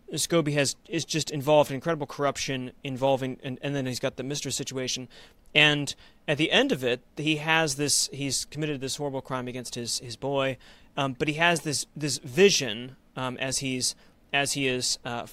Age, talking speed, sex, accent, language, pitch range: 30-49, 190 wpm, male, American, English, 130-160 Hz